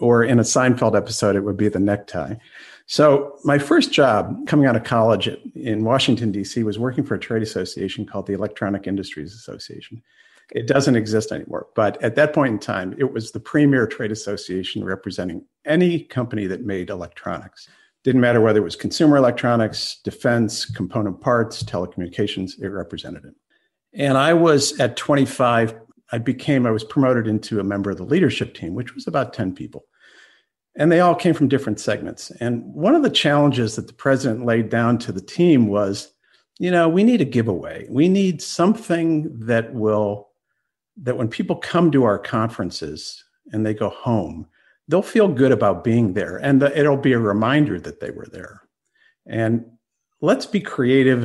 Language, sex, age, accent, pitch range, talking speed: English, male, 50-69, American, 105-145 Hz, 180 wpm